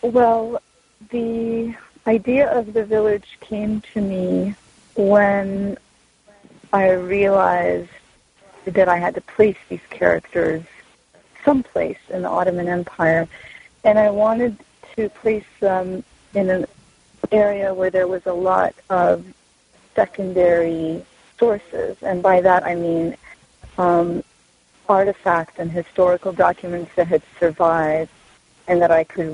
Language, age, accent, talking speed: English, 30-49, American, 120 wpm